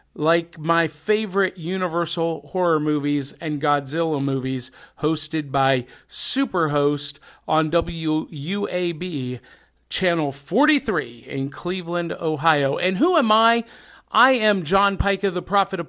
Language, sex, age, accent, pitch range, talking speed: English, male, 50-69, American, 160-215 Hz, 115 wpm